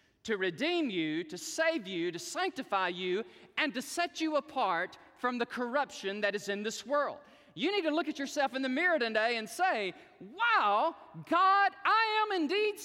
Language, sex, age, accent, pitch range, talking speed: English, male, 40-59, American, 265-365 Hz, 180 wpm